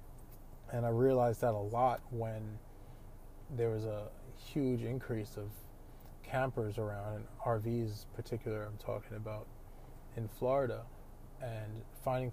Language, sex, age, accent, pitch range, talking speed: English, male, 20-39, American, 110-120 Hz, 115 wpm